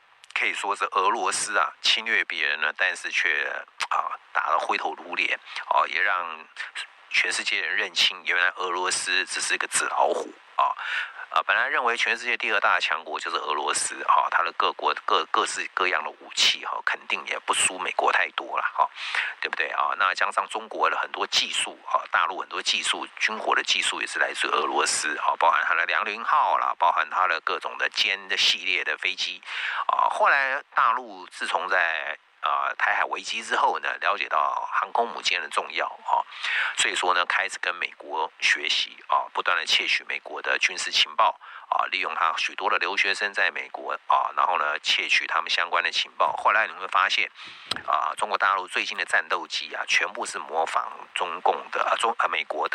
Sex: male